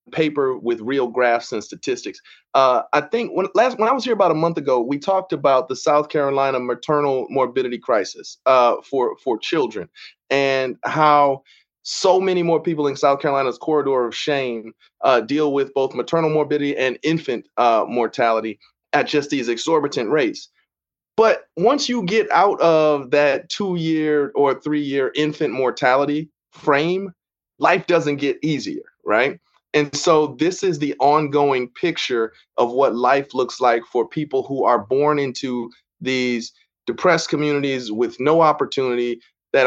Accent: American